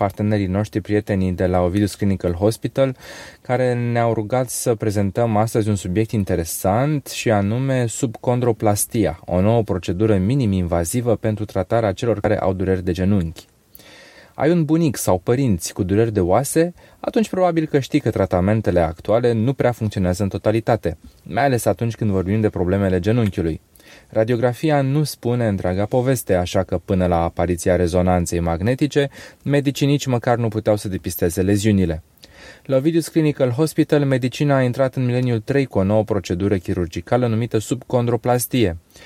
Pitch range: 95-125 Hz